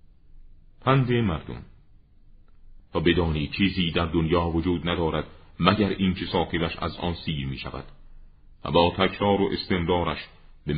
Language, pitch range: Persian, 75-90 Hz